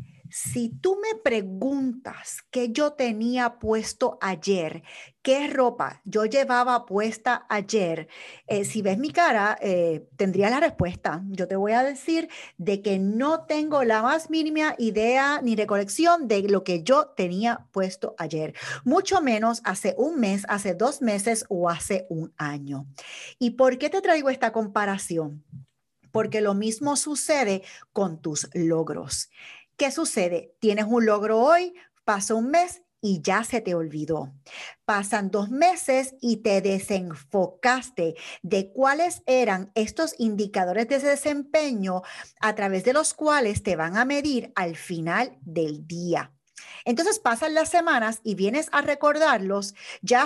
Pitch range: 185-275 Hz